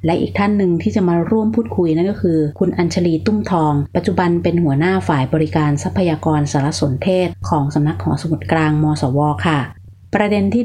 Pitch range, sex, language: 150-185 Hz, female, Thai